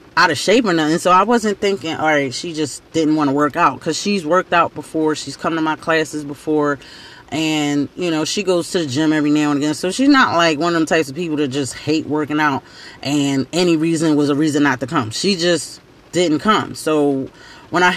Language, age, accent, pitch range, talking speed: English, 30-49, American, 150-205 Hz, 240 wpm